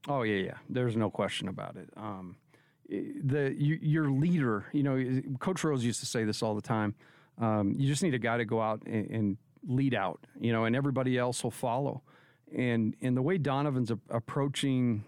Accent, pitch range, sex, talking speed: American, 115-140 Hz, male, 195 wpm